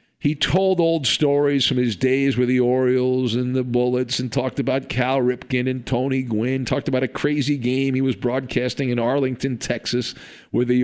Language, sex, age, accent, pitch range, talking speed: English, male, 50-69, American, 115-150 Hz, 190 wpm